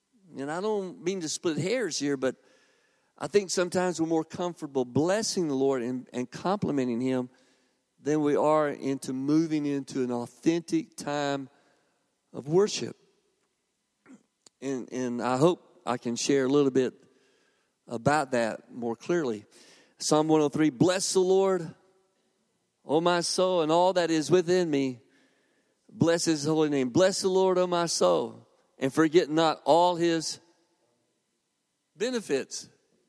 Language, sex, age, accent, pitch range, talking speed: English, male, 50-69, American, 135-190 Hz, 140 wpm